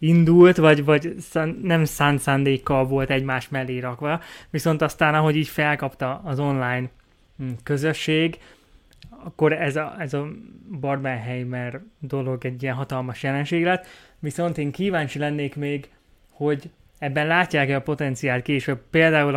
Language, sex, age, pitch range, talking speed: Hungarian, male, 20-39, 135-155 Hz, 130 wpm